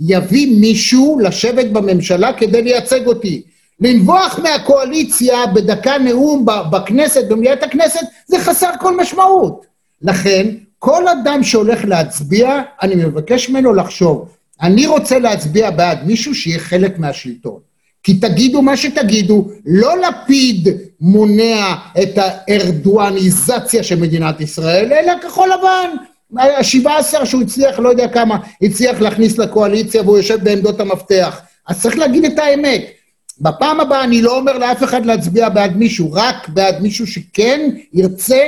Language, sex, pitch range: Hebrew, male, 190-265 Hz